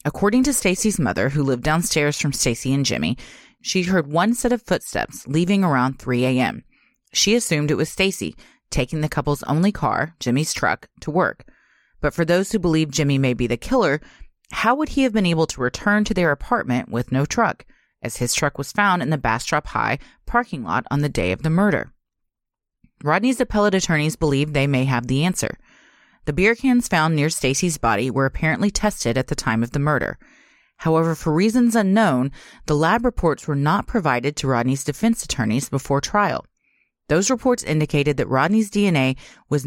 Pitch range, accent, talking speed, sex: 135-200 Hz, American, 190 wpm, female